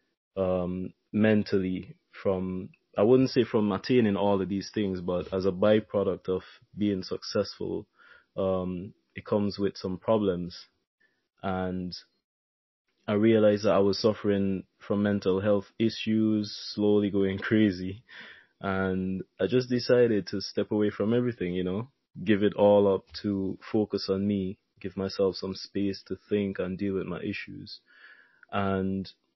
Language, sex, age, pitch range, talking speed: English, male, 20-39, 95-105 Hz, 145 wpm